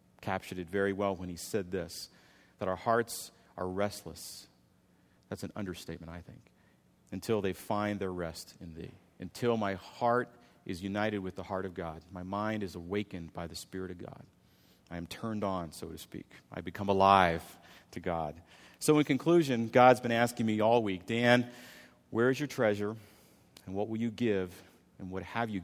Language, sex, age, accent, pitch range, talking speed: English, male, 40-59, American, 90-115 Hz, 185 wpm